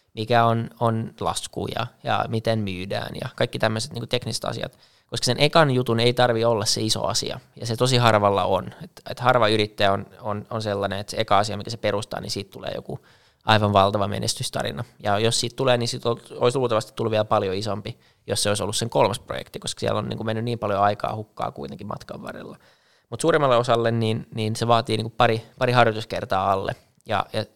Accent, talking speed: native, 220 wpm